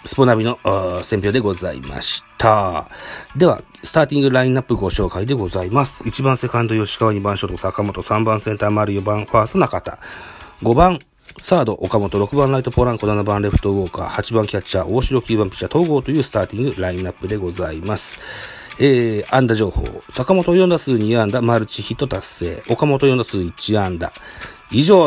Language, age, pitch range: Japanese, 40-59, 100-135 Hz